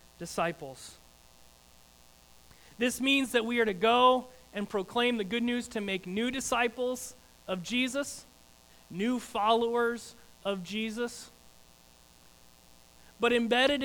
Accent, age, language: American, 40-59, English